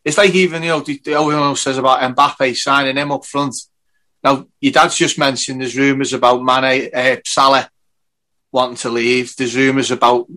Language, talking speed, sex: English, 195 wpm, male